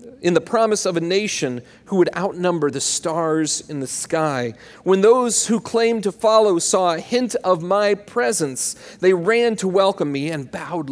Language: English